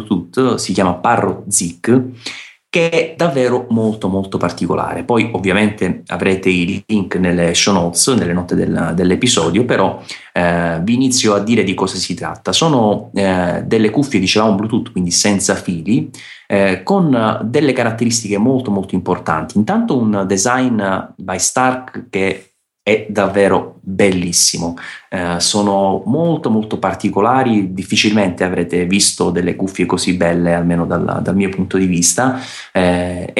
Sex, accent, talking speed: male, native, 145 wpm